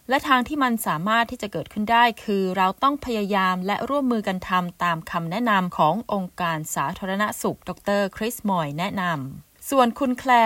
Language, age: Thai, 20-39